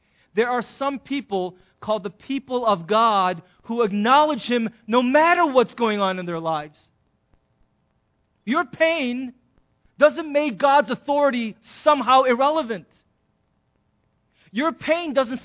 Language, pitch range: English, 180-265 Hz